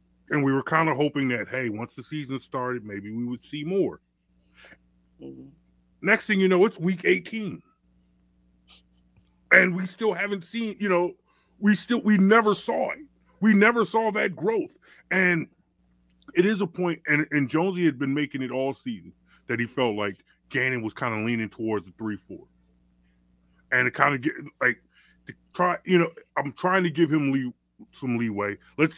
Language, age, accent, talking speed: English, 30-49, American, 175 wpm